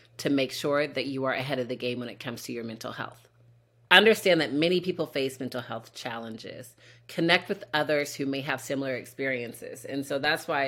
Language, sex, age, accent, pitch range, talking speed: English, female, 30-49, American, 125-155 Hz, 210 wpm